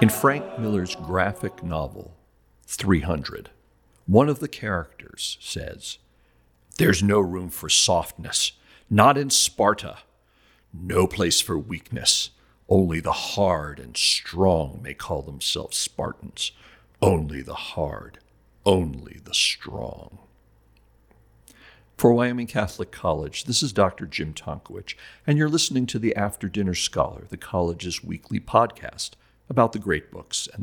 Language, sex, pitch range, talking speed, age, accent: English, male, 85-115 Hz, 125 wpm, 60-79, American